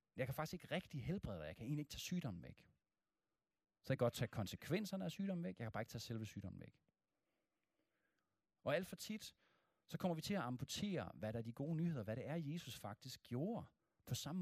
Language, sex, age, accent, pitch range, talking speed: Danish, male, 40-59, native, 110-175 Hz, 230 wpm